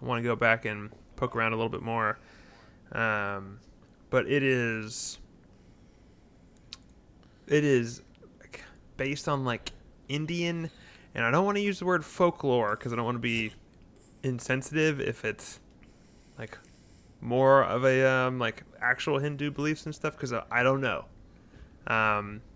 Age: 20-39